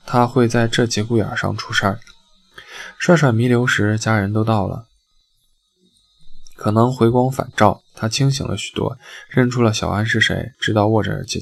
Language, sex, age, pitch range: Chinese, male, 20-39, 105-125 Hz